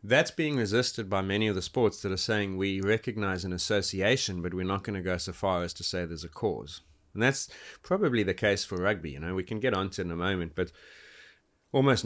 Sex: male